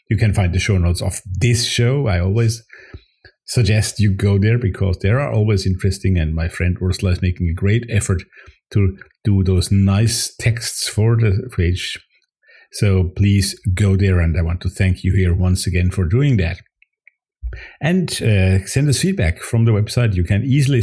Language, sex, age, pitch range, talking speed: English, male, 50-69, 95-110 Hz, 185 wpm